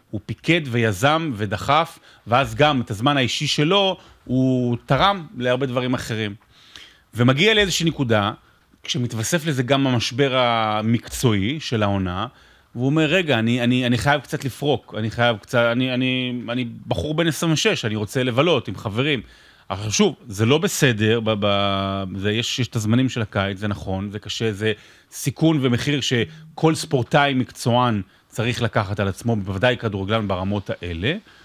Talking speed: 155 wpm